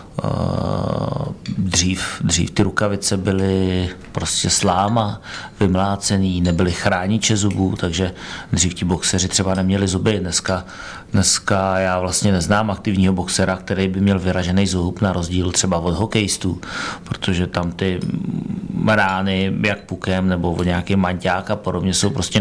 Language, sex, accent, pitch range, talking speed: Czech, male, native, 95-100 Hz, 130 wpm